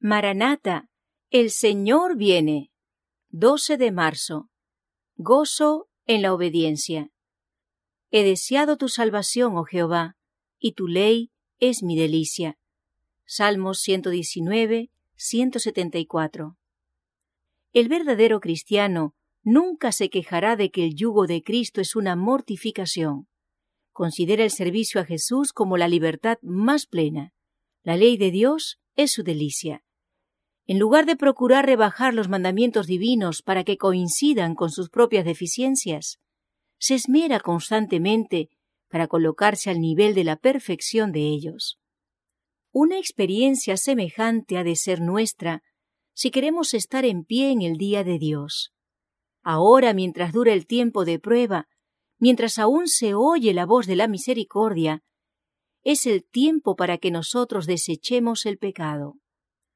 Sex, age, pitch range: female, 40-59, 165-240 Hz